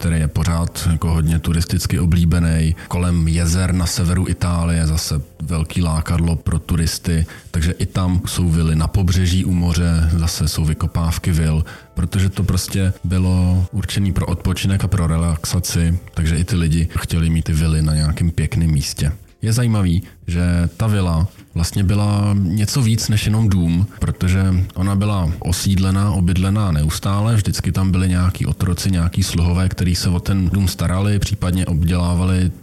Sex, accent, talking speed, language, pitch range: male, native, 155 wpm, Czech, 85-100 Hz